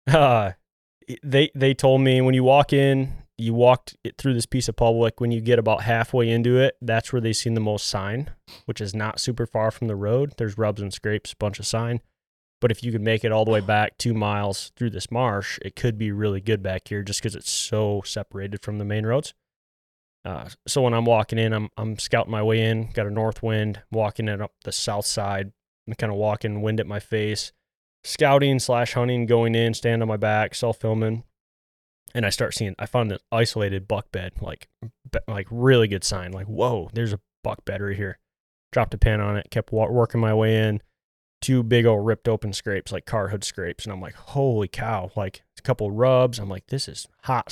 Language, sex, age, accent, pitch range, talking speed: English, male, 20-39, American, 105-120 Hz, 225 wpm